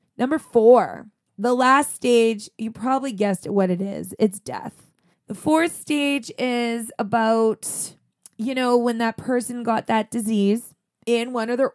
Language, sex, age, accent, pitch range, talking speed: English, female, 20-39, American, 205-240 Hz, 155 wpm